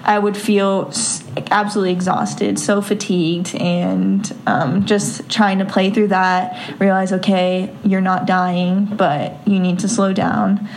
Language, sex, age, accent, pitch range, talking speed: English, female, 10-29, American, 190-215 Hz, 145 wpm